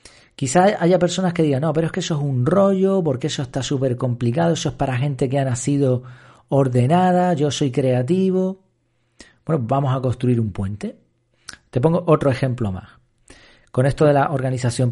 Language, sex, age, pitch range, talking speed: Spanish, male, 40-59, 125-170 Hz, 180 wpm